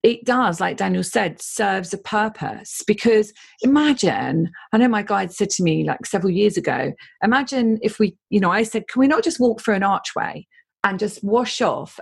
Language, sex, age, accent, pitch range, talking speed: English, female, 40-59, British, 175-240 Hz, 200 wpm